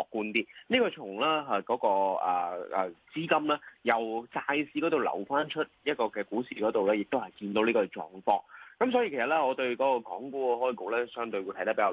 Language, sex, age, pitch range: Chinese, male, 20-39, 110-150 Hz